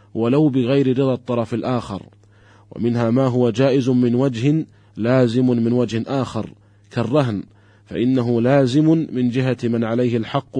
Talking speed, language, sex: 130 wpm, Arabic, male